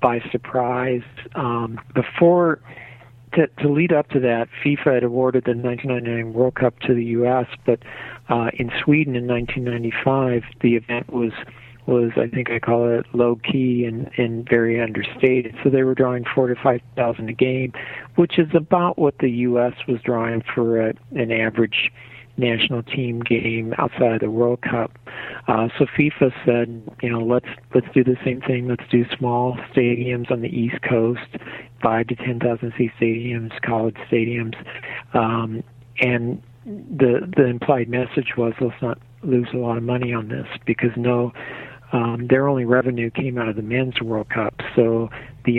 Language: English